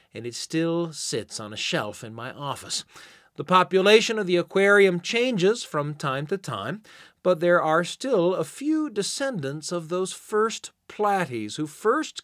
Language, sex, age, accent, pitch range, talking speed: English, male, 40-59, American, 120-180 Hz, 160 wpm